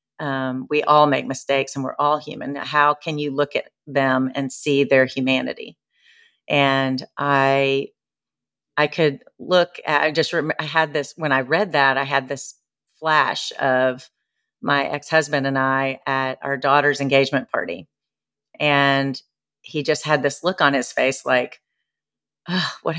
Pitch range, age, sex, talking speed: 135-155 Hz, 40-59, female, 155 wpm